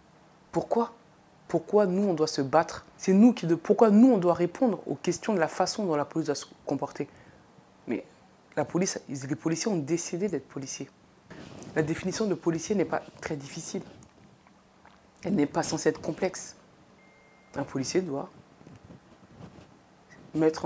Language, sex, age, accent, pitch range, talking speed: French, female, 30-49, French, 145-175 Hz, 155 wpm